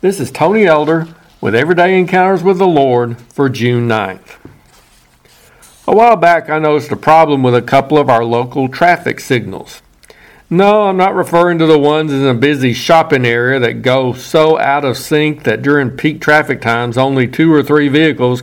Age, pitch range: 50-69, 130-165 Hz